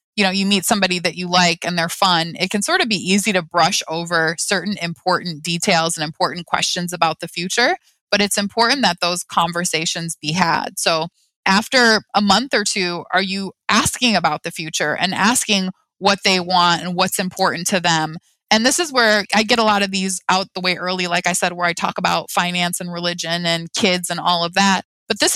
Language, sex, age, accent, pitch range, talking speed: English, female, 20-39, American, 175-210 Hz, 215 wpm